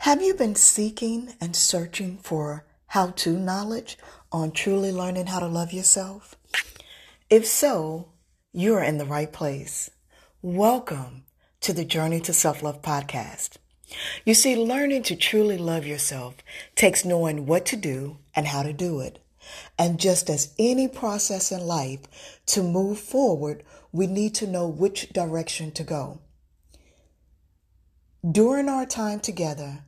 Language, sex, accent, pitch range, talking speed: English, female, American, 145-195 Hz, 140 wpm